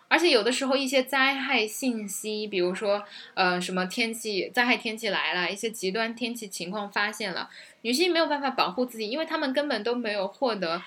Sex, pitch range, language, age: female, 190-250 Hz, Chinese, 10-29